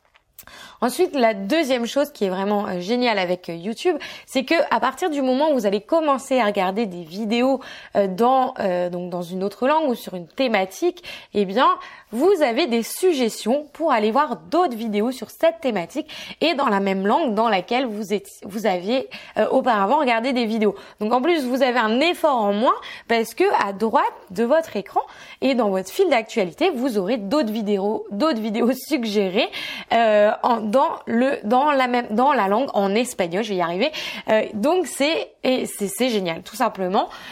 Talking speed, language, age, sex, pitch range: 190 wpm, French, 20-39, female, 210-280 Hz